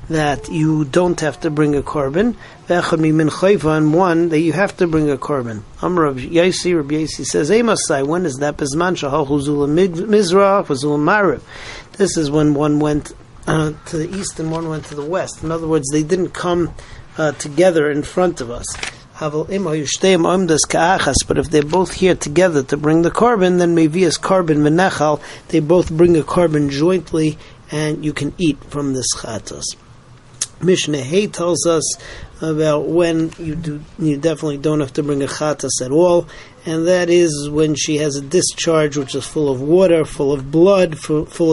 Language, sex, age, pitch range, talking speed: English, male, 50-69, 145-175 Hz, 160 wpm